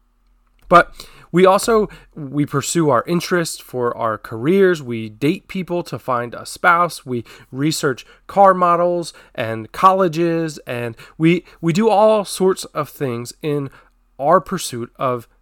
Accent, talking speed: American, 135 wpm